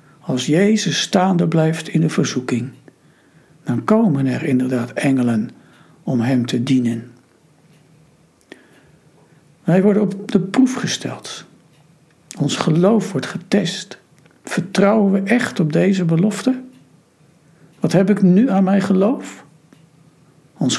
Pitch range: 135-185 Hz